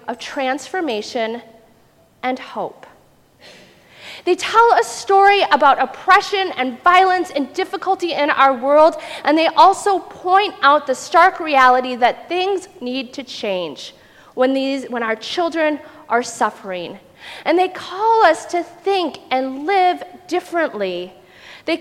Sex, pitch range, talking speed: female, 250-345 Hz, 130 wpm